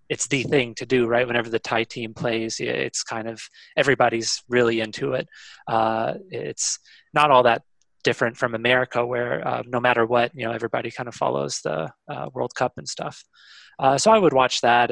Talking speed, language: 195 wpm, English